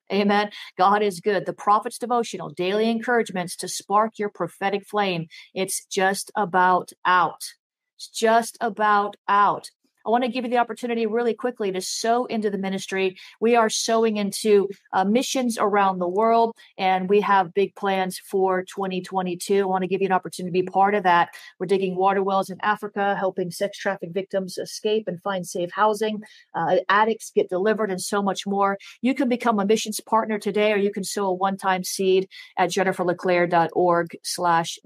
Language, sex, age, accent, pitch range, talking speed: English, female, 40-59, American, 185-220 Hz, 180 wpm